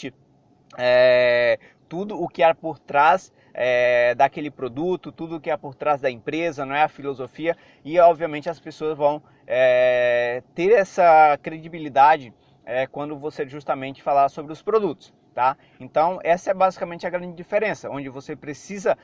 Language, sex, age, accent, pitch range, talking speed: Portuguese, male, 20-39, Brazilian, 140-165 Hz, 160 wpm